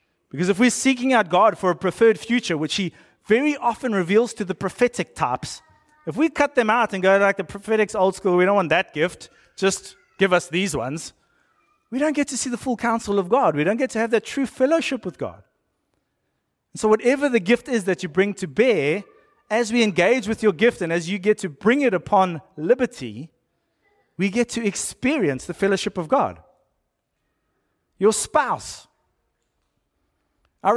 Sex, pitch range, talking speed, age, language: male, 170-235 Hz, 190 wpm, 30-49, English